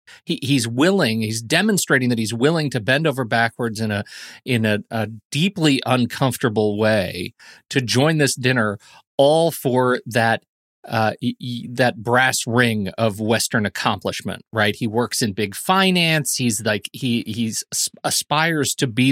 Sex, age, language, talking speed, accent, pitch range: male, 30-49, English, 150 wpm, American, 115-155 Hz